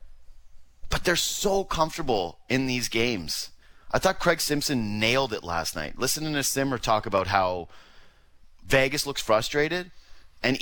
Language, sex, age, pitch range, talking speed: English, male, 30-49, 110-150 Hz, 140 wpm